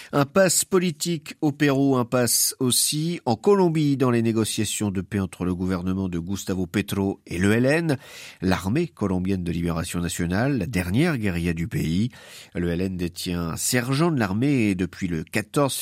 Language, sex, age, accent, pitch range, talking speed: French, male, 50-69, French, 95-130 Hz, 165 wpm